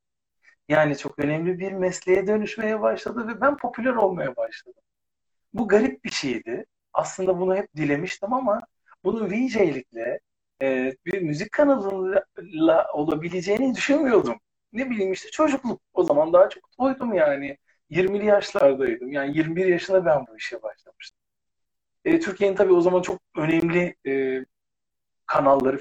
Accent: native